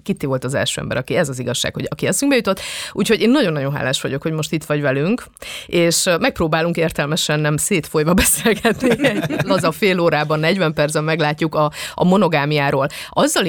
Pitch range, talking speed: 150-195 Hz, 180 wpm